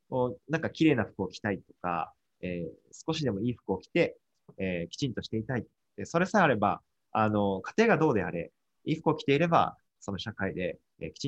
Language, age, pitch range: Japanese, 20-39, 100-155 Hz